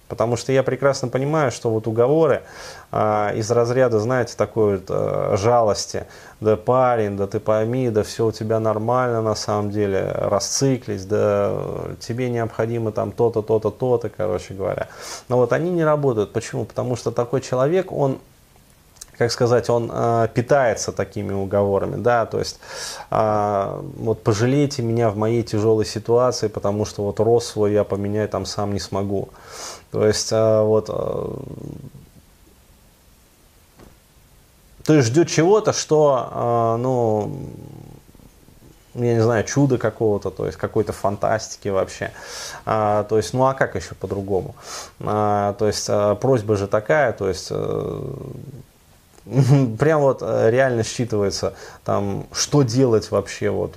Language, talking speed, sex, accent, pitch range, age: Russian, 140 wpm, male, native, 105-125 Hz, 20-39